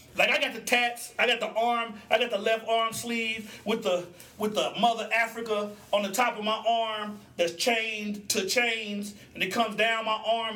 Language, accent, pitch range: English, American, 195-230 Hz